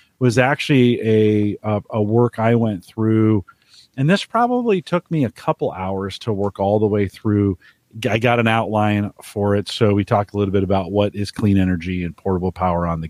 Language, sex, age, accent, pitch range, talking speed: English, male, 40-59, American, 95-120 Hz, 205 wpm